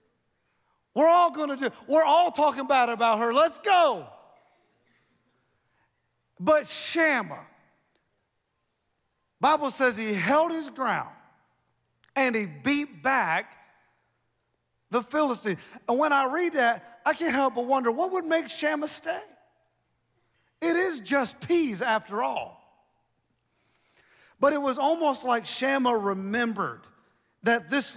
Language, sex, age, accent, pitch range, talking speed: English, male, 40-59, American, 200-280 Hz, 120 wpm